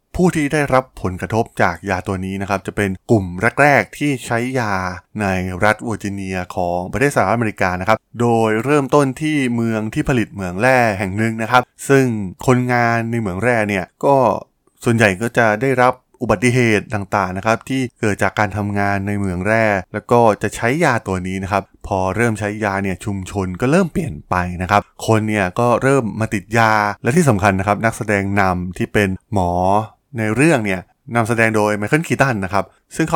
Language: Thai